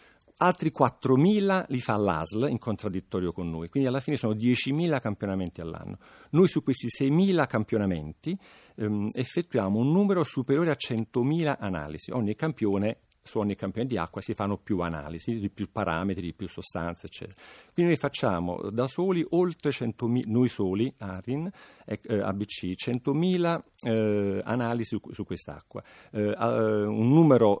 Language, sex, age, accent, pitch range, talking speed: Italian, male, 50-69, native, 95-125 Hz, 150 wpm